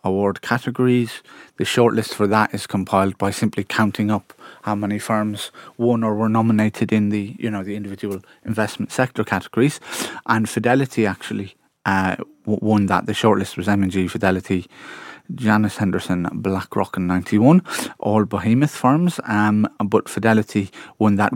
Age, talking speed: 30-49, 155 wpm